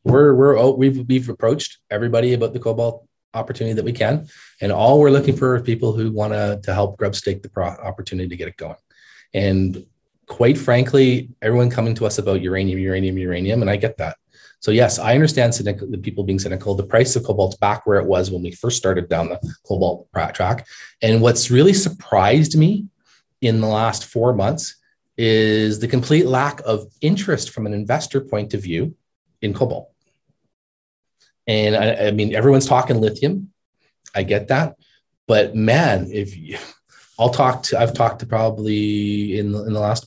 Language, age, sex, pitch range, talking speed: English, 30-49, male, 105-135 Hz, 185 wpm